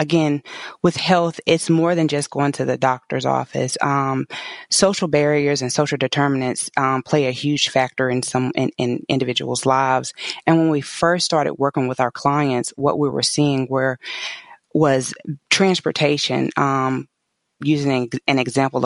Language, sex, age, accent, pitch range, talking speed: English, female, 20-39, American, 130-155 Hz, 155 wpm